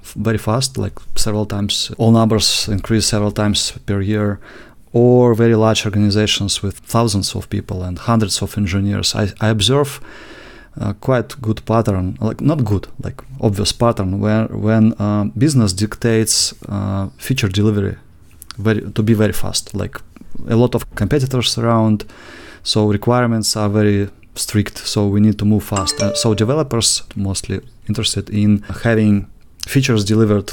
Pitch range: 105-120 Hz